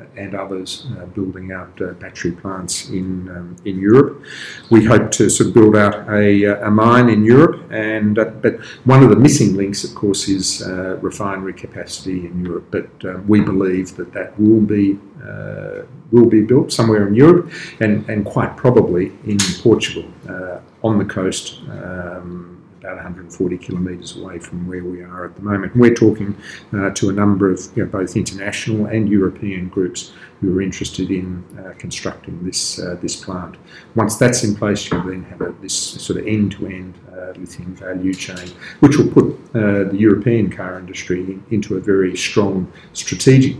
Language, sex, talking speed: English, male, 180 wpm